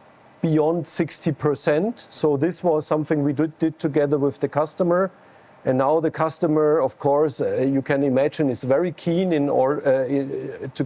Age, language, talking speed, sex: 50-69, English, 150 wpm, male